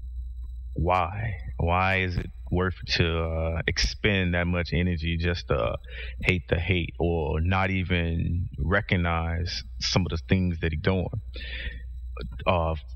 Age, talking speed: 30-49, 130 wpm